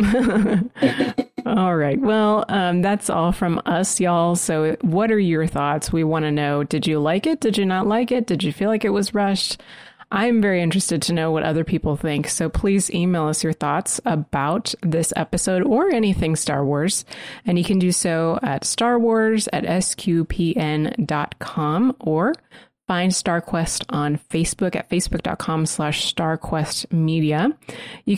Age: 30-49